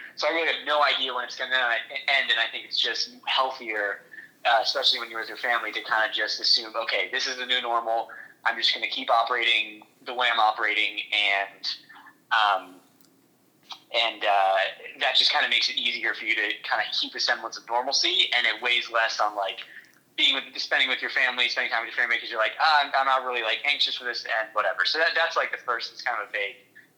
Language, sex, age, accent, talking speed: English, male, 20-39, American, 240 wpm